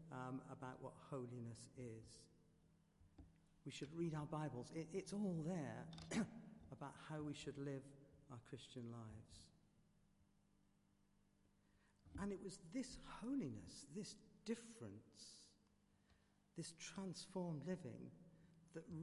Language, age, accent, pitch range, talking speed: English, 50-69, British, 125-170 Hz, 100 wpm